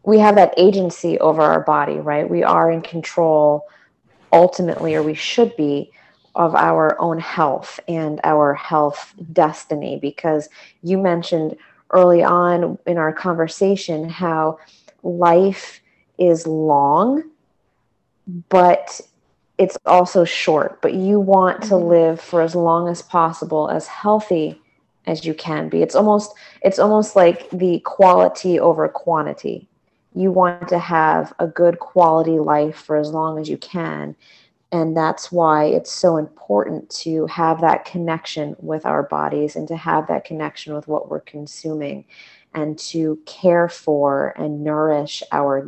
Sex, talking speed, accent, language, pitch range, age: female, 145 wpm, American, English, 150-175 Hz, 30-49